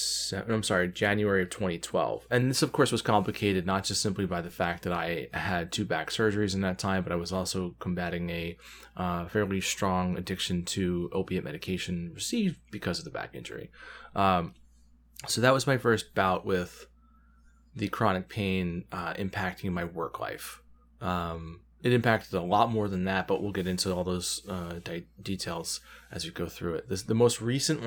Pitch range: 90-110 Hz